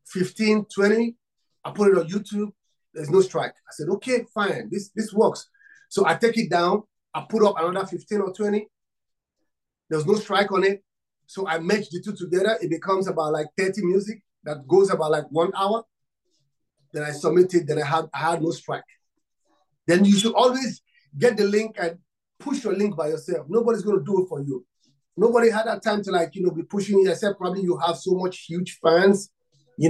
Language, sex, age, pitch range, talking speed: English, male, 30-49, 165-205 Hz, 200 wpm